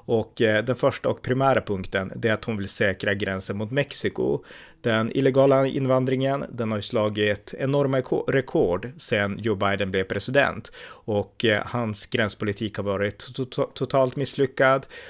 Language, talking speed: Swedish, 135 wpm